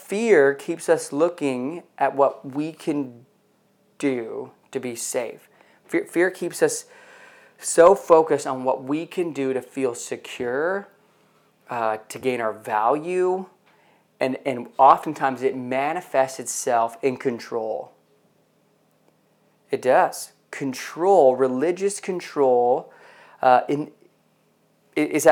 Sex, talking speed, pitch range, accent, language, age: male, 110 wpm, 130-170 Hz, American, English, 30-49